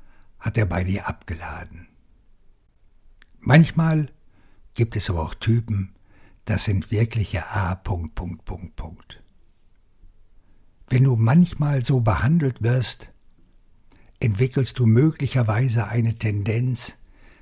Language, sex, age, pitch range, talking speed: German, male, 60-79, 95-125 Hz, 90 wpm